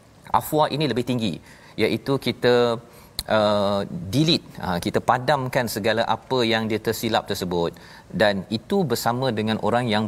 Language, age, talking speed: Malayalam, 40-59, 130 wpm